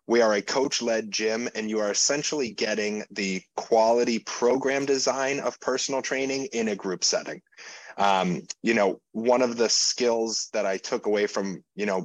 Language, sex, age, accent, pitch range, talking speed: English, male, 30-49, American, 100-115 Hz, 175 wpm